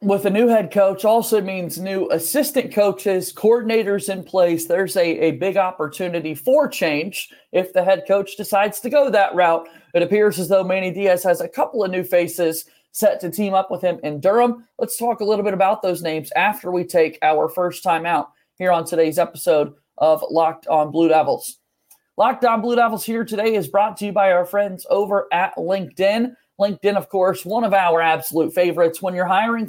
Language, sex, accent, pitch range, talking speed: English, male, American, 180-220 Hz, 205 wpm